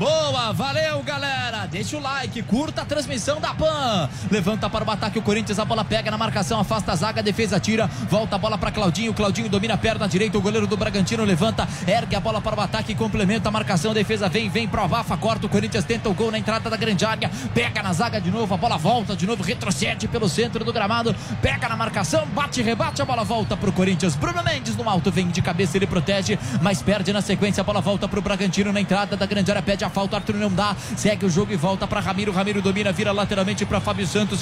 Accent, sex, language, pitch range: Brazilian, male, English, 190-210 Hz